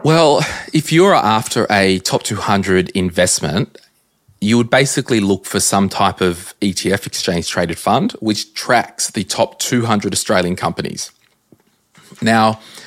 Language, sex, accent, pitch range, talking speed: English, male, Australian, 90-115 Hz, 130 wpm